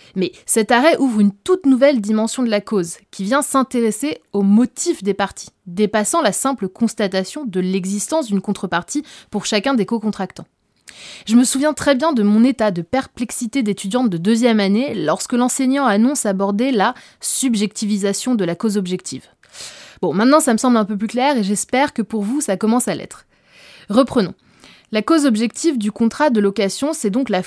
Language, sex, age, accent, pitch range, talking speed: French, female, 20-39, French, 200-260 Hz, 180 wpm